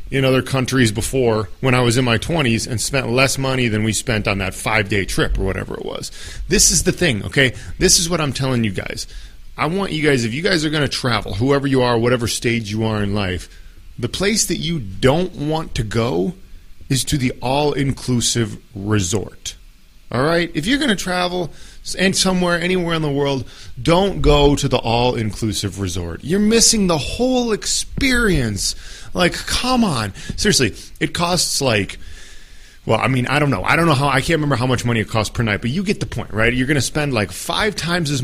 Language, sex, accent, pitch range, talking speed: English, male, American, 105-150 Hz, 215 wpm